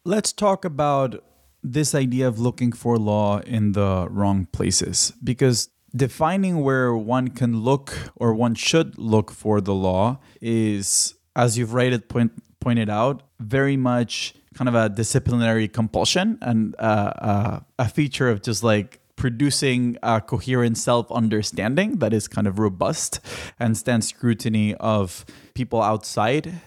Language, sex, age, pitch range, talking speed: English, male, 20-39, 105-130 Hz, 135 wpm